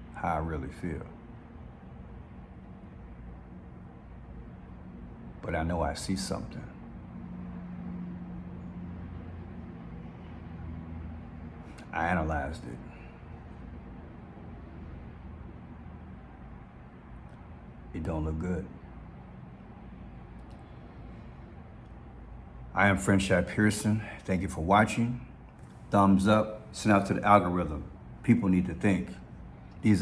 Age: 60-79